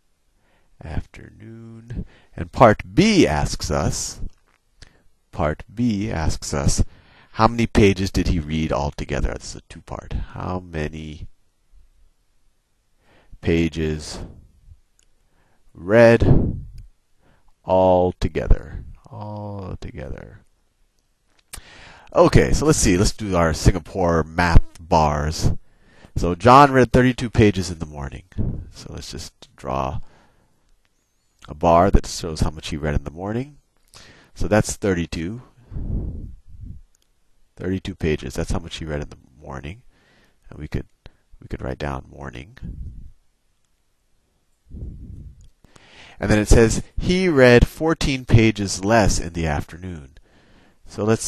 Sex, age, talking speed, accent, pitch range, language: male, 40-59, 110 wpm, American, 80-105 Hz, English